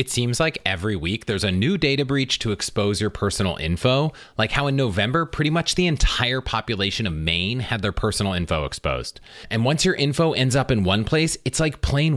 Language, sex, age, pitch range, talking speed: English, male, 30-49, 105-150 Hz, 210 wpm